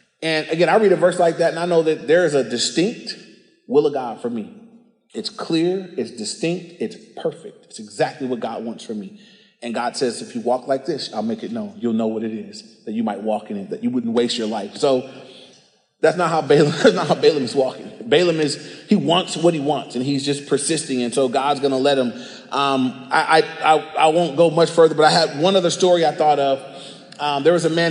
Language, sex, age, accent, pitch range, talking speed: English, male, 30-49, American, 145-195 Hz, 240 wpm